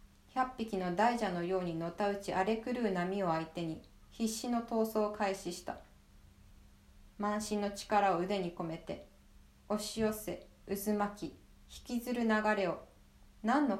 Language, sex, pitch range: Japanese, female, 160-210 Hz